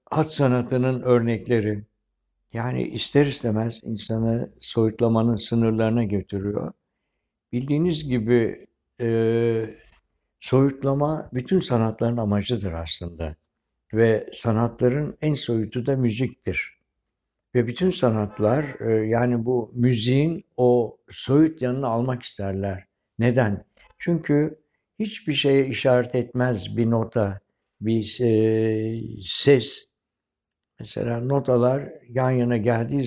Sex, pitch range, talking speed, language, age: male, 110-130 Hz, 95 wpm, Turkish, 60-79